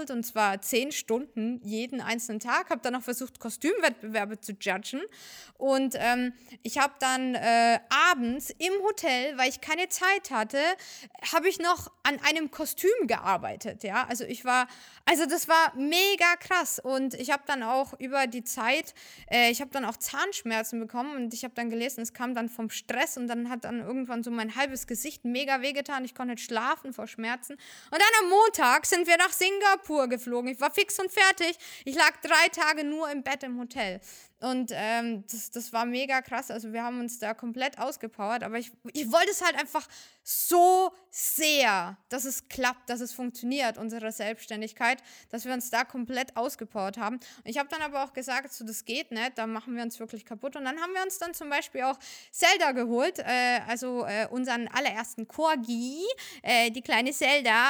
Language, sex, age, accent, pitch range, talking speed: German, female, 20-39, German, 235-300 Hz, 195 wpm